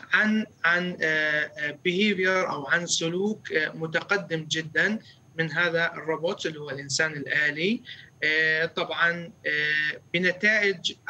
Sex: male